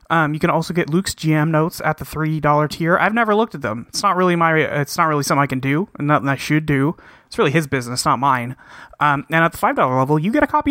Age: 30-49